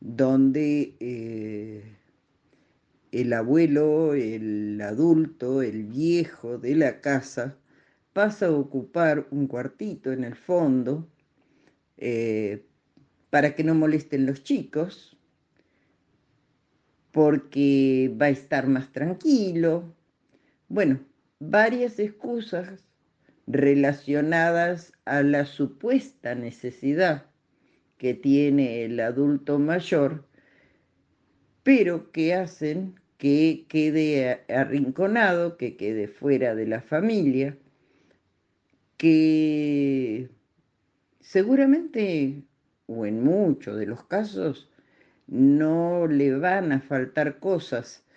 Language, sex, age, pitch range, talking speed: Spanish, female, 50-69, 130-165 Hz, 90 wpm